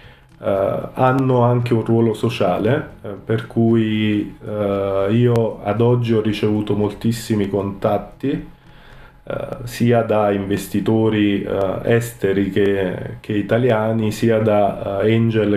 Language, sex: Italian, male